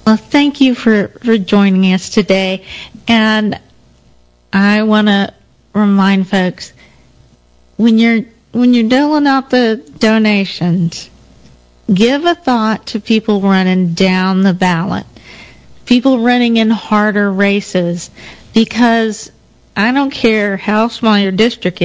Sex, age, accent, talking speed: female, 40-59, American, 120 wpm